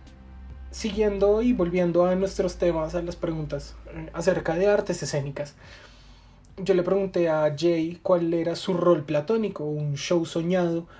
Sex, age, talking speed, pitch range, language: male, 20-39, 140 wpm, 150-180 Hz, English